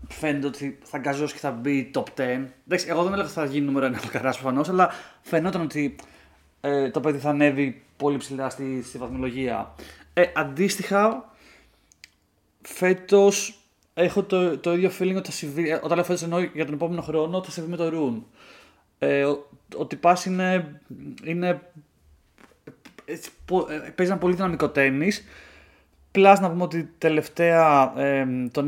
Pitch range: 140-180 Hz